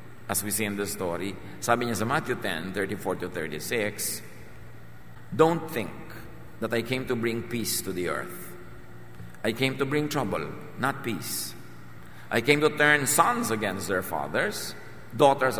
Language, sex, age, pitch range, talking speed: English, male, 50-69, 100-125 Hz, 150 wpm